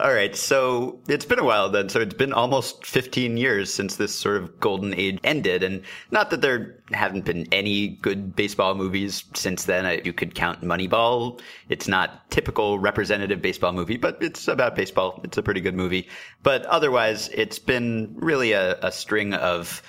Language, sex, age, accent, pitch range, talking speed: English, male, 30-49, American, 95-120 Hz, 185 wpm